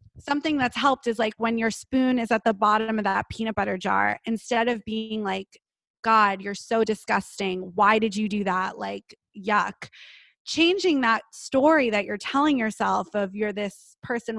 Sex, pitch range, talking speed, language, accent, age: female, 205-260 Hz, 180 wpm, English, American, 20-39